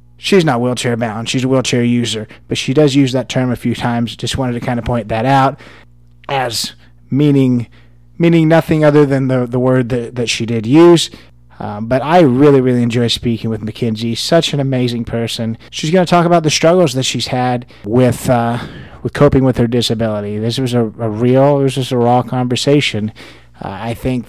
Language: English